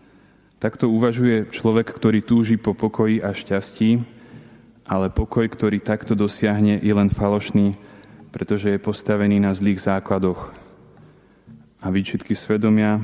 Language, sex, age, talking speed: Slovak, male, 20-39, 120 wpm